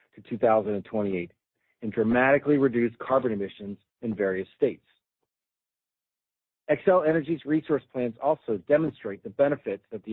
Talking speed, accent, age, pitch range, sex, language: 120 wpm, American, 40-59, 115-140 Hz, male, English